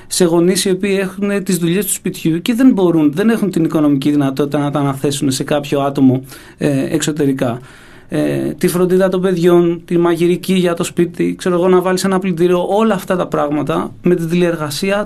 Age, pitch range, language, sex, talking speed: 30-49, 155-200 Hz, Greek, male, 190 wpm